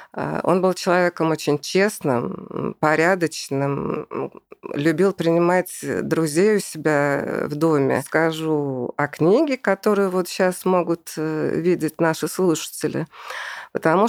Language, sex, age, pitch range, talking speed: Russian, female, 50-69, 150-190 Hz, 100 wpm